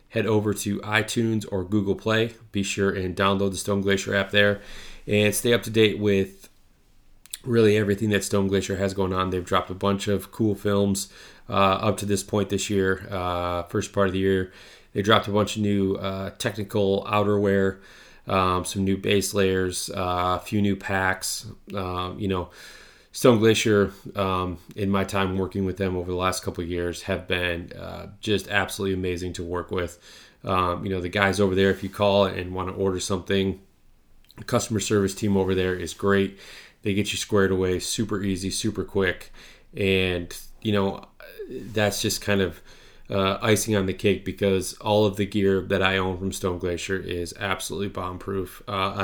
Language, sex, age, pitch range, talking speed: English, male, 20-39, 95-105 Hz, 190 wpm